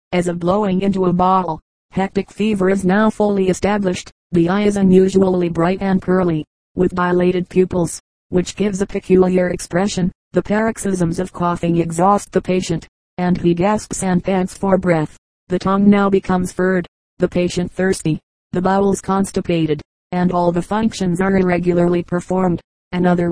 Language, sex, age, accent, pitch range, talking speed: English, female, 30-49, American, 175-190 Hz, 155 wpm